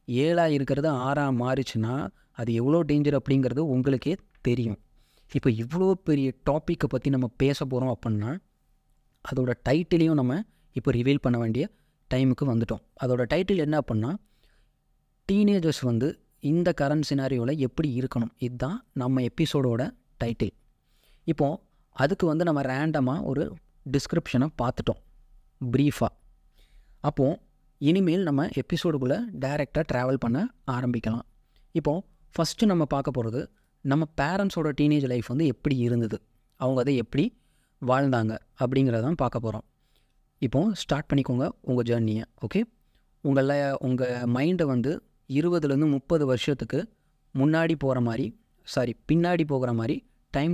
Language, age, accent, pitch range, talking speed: Tamil, 20-39, native, 125-155 Hz, 120 wpm